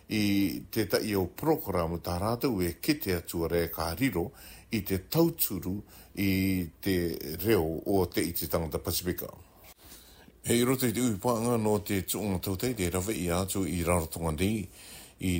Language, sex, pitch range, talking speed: English, male, 85-100 Hz, 145 wpm